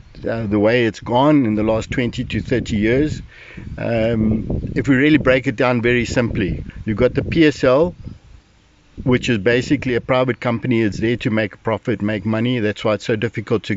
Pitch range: 110-135 Hz